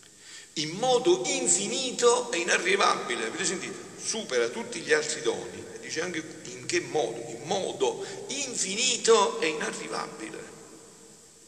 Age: 60-79